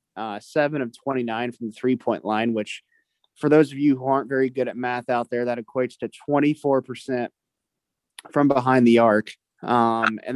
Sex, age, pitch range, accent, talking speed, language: male, 20-39, 115-140 Hz, American, 180 wpm, English